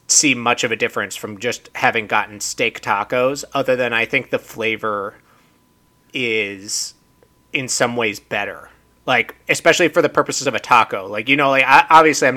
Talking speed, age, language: 175 wpm, 30-49, English